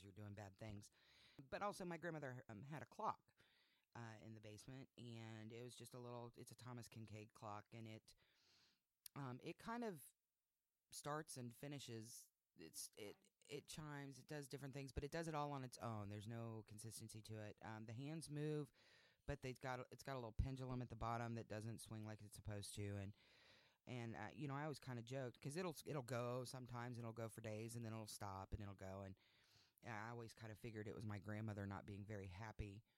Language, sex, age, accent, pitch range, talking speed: English, female, 30-49, American, 105-125 Hz, 220 wpm